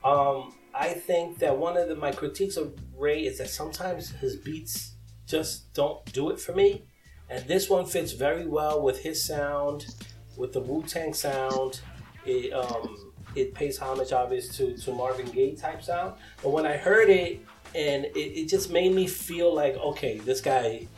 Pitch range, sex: 130-170 Hz, male